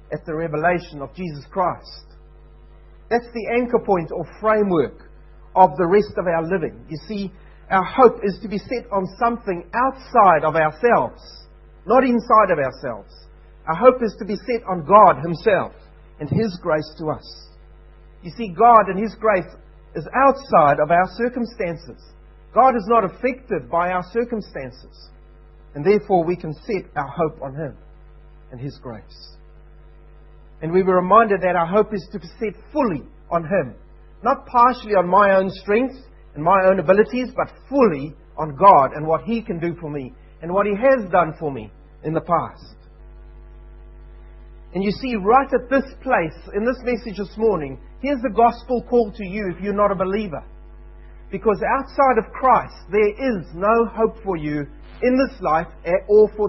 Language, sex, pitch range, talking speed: English, male, 155-225 Hz, 170 wpm